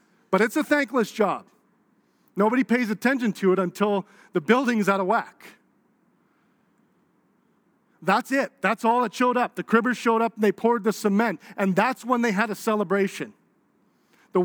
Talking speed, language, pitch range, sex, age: 165 wpm, English, 185-245 Hz, male, 40-59